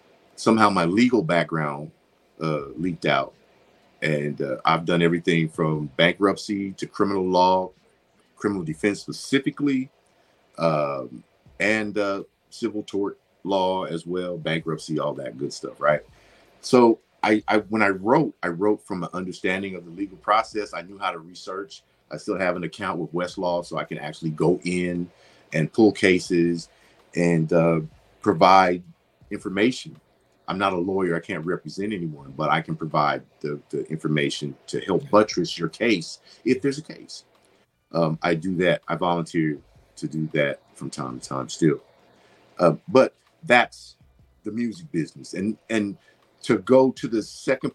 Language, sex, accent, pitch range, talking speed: English, male, American, 80-105 Hz, 155 wpm